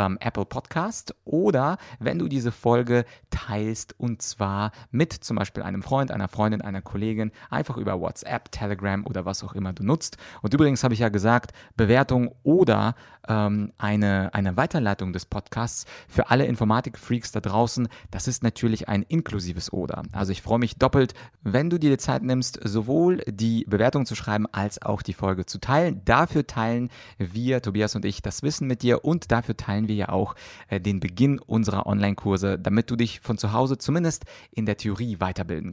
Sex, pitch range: male, 100-120 Hz